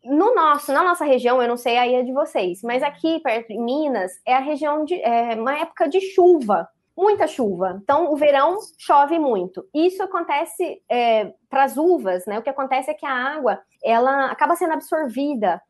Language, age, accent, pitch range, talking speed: Portuguese, 20-39, Brazilian, 235-320 Hz, 195 wpm